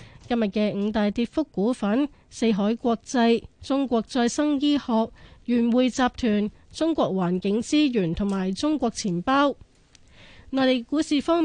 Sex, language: female, Chinese